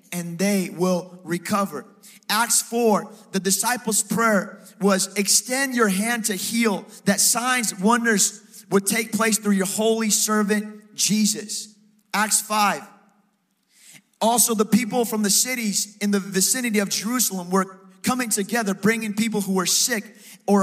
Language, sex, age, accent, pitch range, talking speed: English, male, 30-49, American, 195-220 Hz, 140 wpm